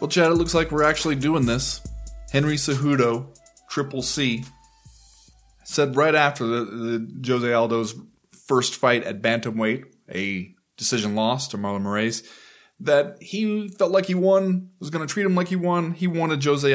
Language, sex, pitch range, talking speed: English, male, 120-165 Hz, 170 wpm